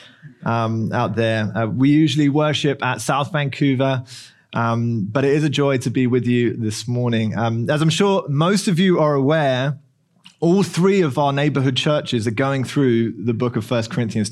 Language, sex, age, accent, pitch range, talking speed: English, male, 20-39, British, 120-165 Hz, 190 wpm